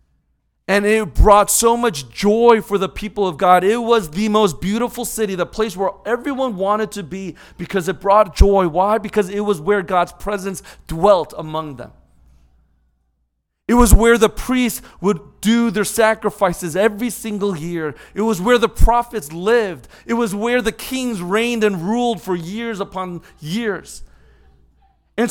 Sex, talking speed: male, 165 wpm